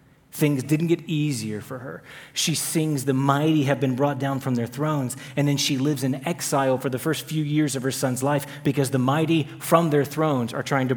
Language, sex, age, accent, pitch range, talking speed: English, male, 30-49, American, 130-150 Hz, 225 wpm